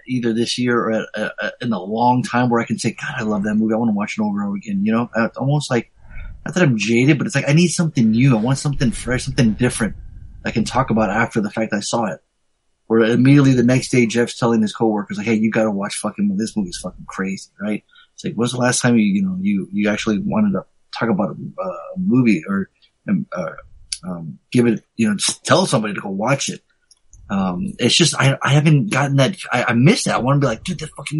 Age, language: 30-49, English